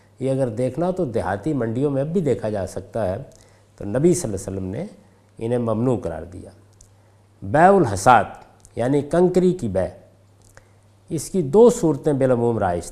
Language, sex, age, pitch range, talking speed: Urdu, male, 50-69, 100-160 Hz, 170 wpm